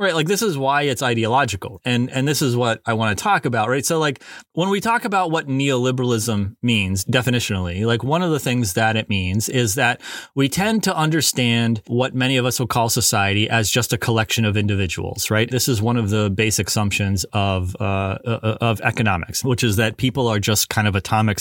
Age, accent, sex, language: 30-49, American, male, English